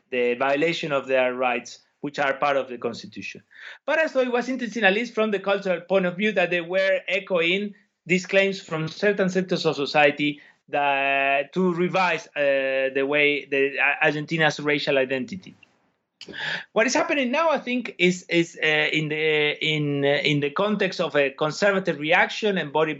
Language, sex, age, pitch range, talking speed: English, male, 30-49, 135-185 Hz, 170 wpm